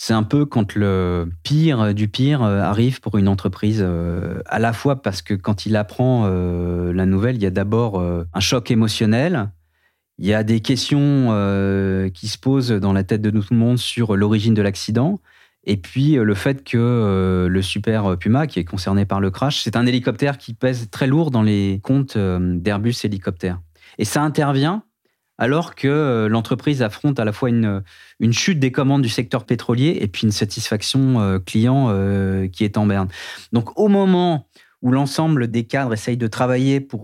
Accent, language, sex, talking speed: French, French, male, 195 wpm